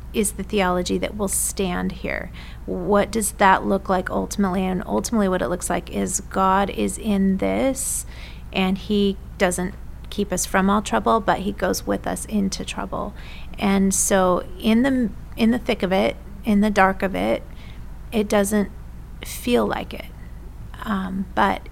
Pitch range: 160-210 Hz